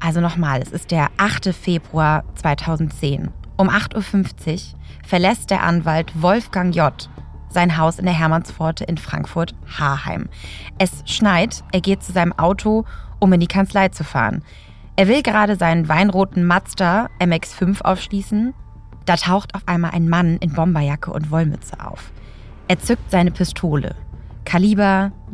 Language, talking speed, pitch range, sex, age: German, 140 wpm, 160-195 Hz, female, 20-39